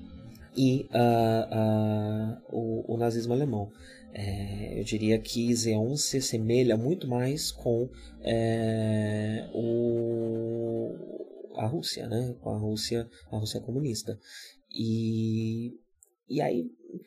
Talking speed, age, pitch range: 115 wpm, 20-39, 110-125 Hz